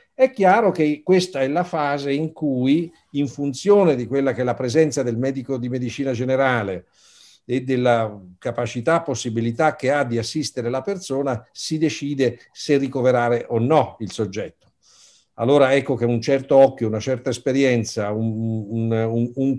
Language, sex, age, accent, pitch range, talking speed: Italian, male, 50-69, native, 115-145 Hz, 155 wpm